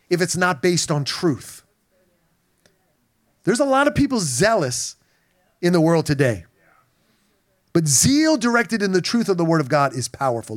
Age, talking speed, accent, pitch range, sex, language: 30-49, 165 wpm, American, 145-210 Hz, male, English